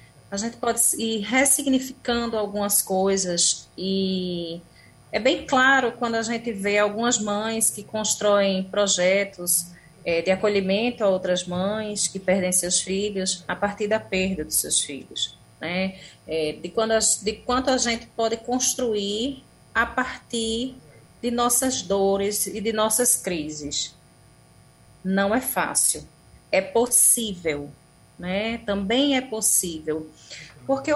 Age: 30-49